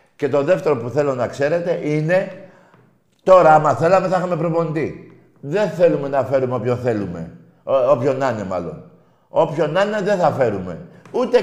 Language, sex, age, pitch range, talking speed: Greek, male, 50-69, 110-155 Hz, 165 wpm